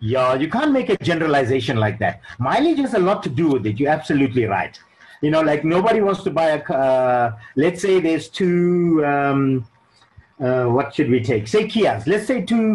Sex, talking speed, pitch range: male, 205 wpm, 125-190 Hz